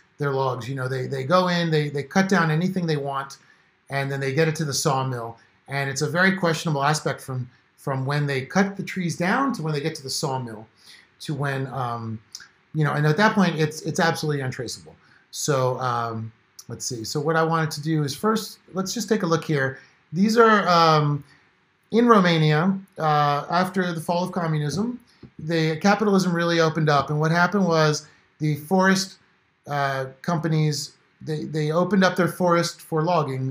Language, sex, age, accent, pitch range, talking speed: English, male, 40-59, American, 140-180 Hz, 190 wpm